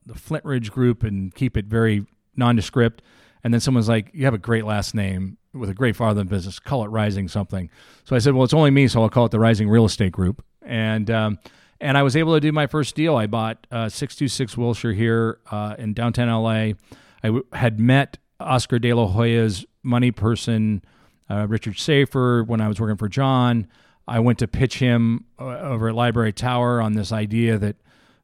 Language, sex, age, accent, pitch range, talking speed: English, male, 40-59, American, 110-125 Hz, 215 wpm